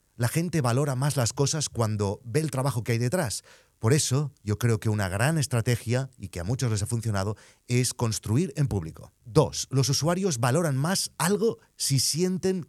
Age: 30-49